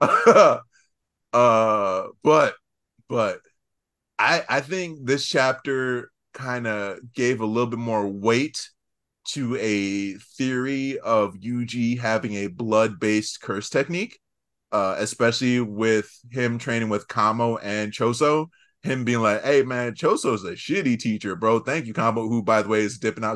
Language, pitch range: English, 100-125 Hz